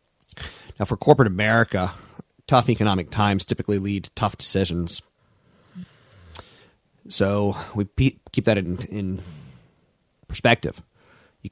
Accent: American